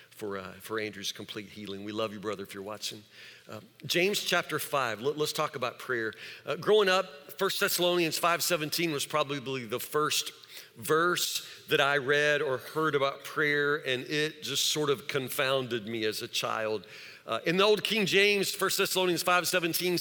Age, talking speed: 50-69, 180 wpm